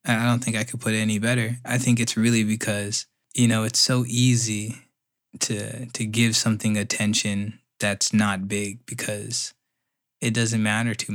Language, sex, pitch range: English, male, 105-120 Hz